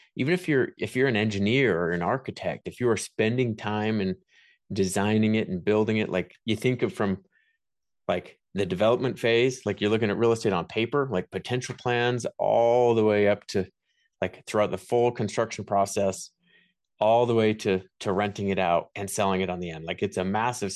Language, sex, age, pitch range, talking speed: English, male, 30-49, 95-120 Hz, 200 wpm